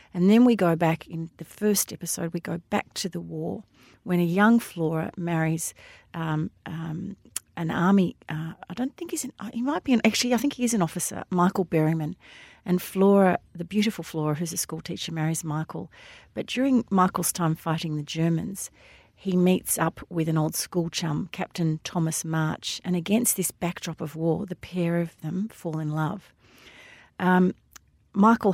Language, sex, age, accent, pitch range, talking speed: English, female, 40-59, Australian, 160-190 Hz, 185 wpm